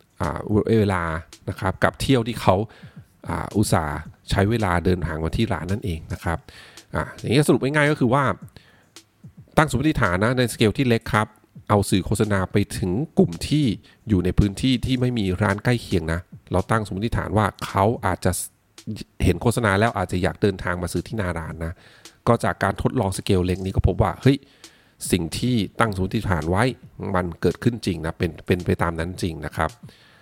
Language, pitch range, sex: English, 95-120 Hz, male